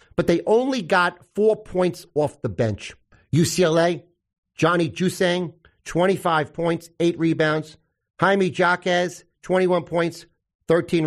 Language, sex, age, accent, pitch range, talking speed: English, male, 40-59, American, 135-175 Hz, 115 wpm